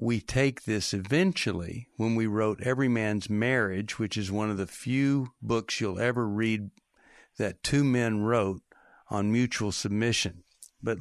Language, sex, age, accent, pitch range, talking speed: English, male, 60-79, American, 110-145 Hz, 155 wpm